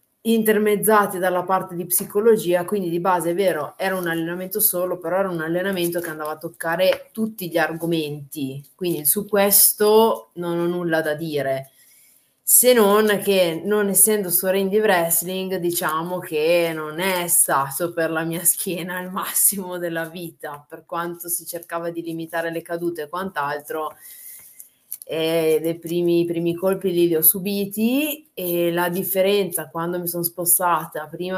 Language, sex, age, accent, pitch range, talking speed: Italian, female, 20-39, native, 155-185 Hz, 155 wpm